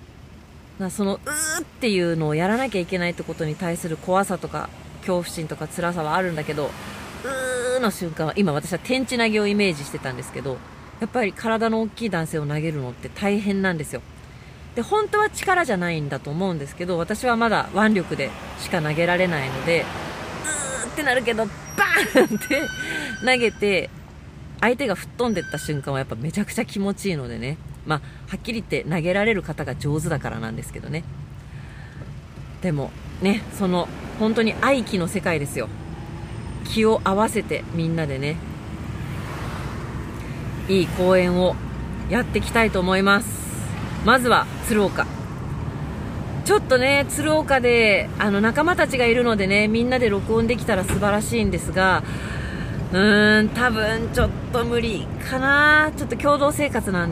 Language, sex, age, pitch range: Japanese, female, 40-59, 160-230 Hz